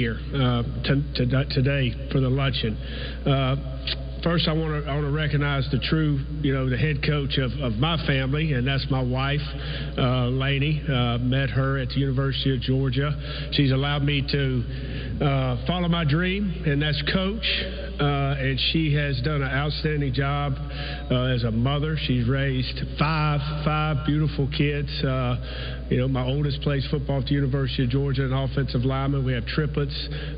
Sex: male